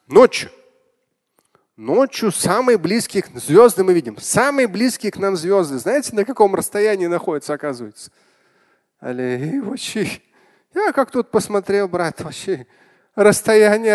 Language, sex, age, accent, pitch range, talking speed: Russian, male, 30-49, native, 175-260 Hz, 110 wpm